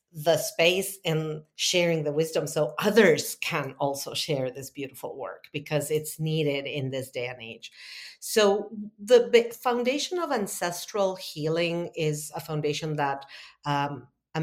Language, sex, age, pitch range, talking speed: English, female, 50-69, 150-175 Hz, 140 wpm